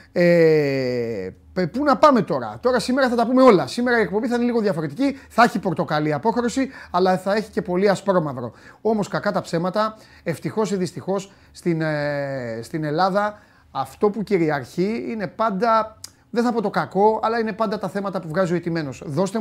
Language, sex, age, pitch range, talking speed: Greek, male, 30-49, 170-215 Hz, 180 wpm